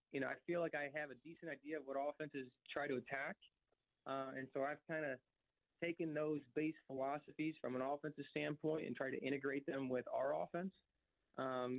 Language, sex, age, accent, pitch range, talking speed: English, male, 20-39, American, 125-150 Hz, 200 wpm